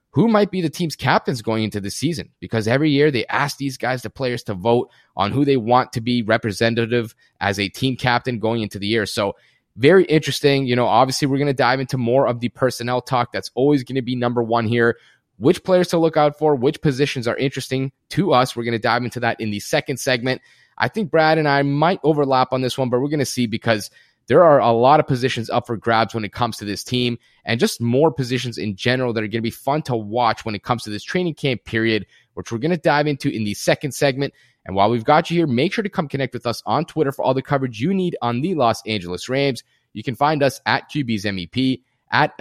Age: 20-39